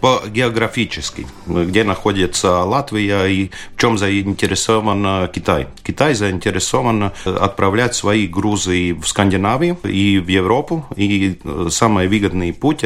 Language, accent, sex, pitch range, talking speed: Russian, native, male, 90-105 Hz, 105 wpm